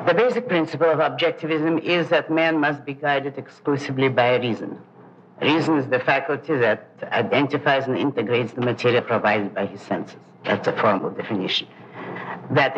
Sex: female